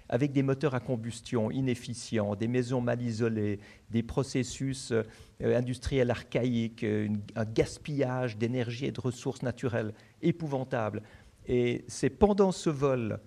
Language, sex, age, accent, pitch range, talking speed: French, male, 50-69, French, 115-140 Hz, 120 wpm